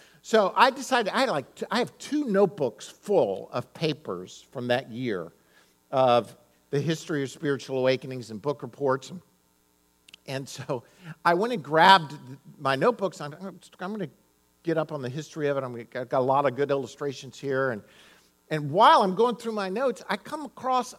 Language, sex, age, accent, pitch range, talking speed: English, male, 50-69, American, 135-205 Hz, 185 wpm